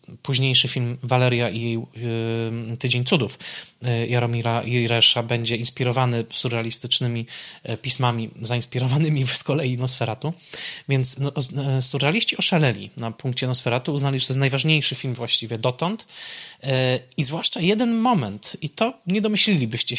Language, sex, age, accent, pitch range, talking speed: Polish, male, 20-39, native, 125-160 Hz, 115 wpm